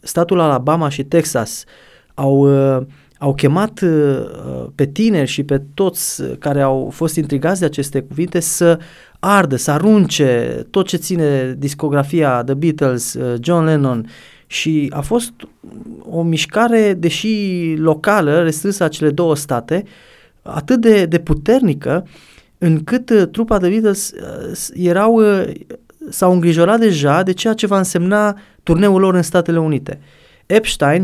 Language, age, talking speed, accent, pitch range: Romanian, 20-39, 130 wpm, native, 140-195 Hz